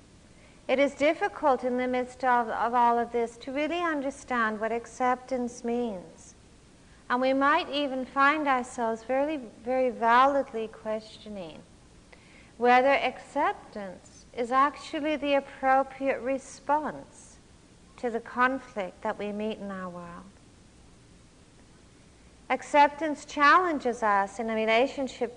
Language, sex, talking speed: English, female, 115 wpm